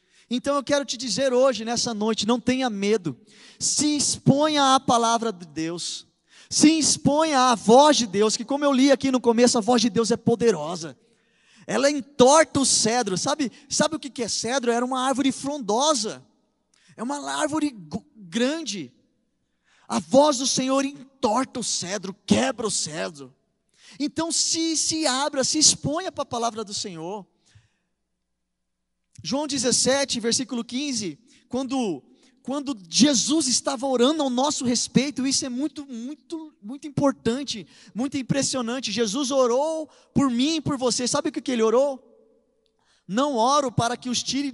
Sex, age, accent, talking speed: male, 20-39, Brazilian, 155 wpm